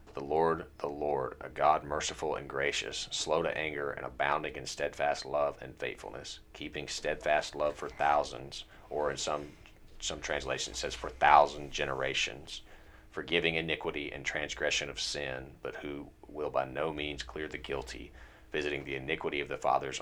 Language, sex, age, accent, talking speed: English, male, 40-59, American, 160 wpm